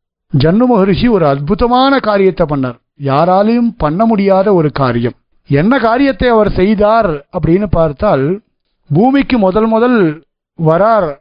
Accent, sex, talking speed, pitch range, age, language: native, male, 110 wpm, 160-215 Hz, 50-69, Tamil